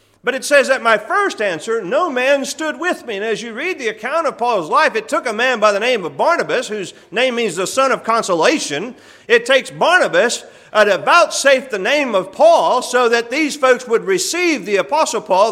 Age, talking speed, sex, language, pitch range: 40-59, 215 wpm, male, English, 180-255 Hz